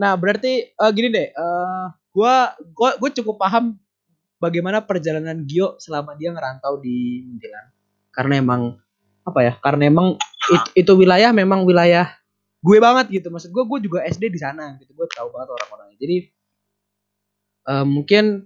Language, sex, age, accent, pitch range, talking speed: Indonesian, male, 20-39, native, 140-210 Hz, 155 wpm